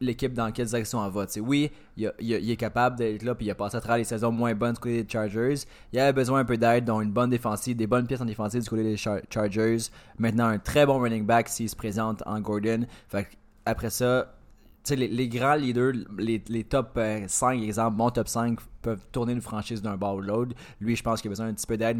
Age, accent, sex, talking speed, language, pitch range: 20-39, Canadian, male, 250 wpm, French, 100-120 Hz